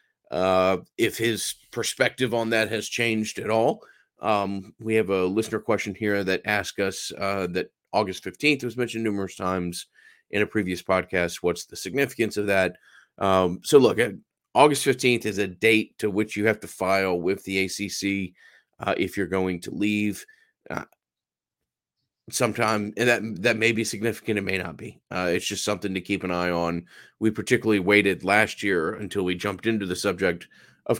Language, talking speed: English, 180 wpm